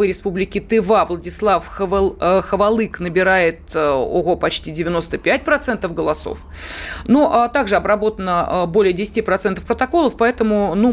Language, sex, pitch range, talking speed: Russian, female, 180-235 Hz, 105 wpm